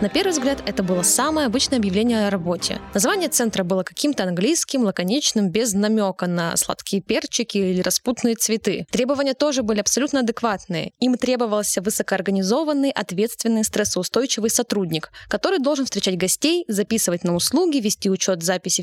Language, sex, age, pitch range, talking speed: Russian, female, 20-39, 205-275 Hz, 145 wpm